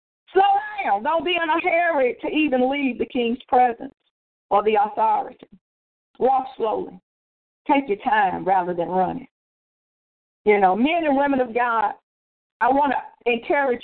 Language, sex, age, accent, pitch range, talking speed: English, female, 50-69, American, 245-320 Hz, 150 wpm